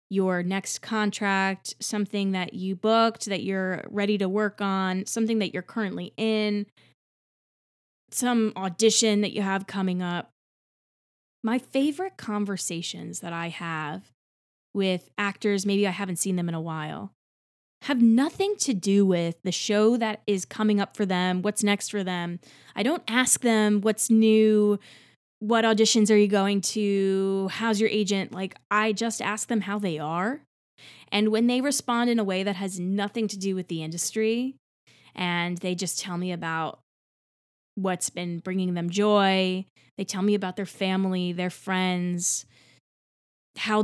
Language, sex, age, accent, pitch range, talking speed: English, female, 20-39, American, 185-220 Hz, 160 wpm